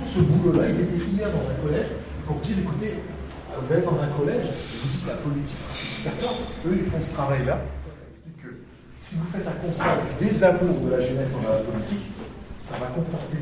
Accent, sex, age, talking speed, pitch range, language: French, male, 40-59, 190 wpm, 125-170 Hz, French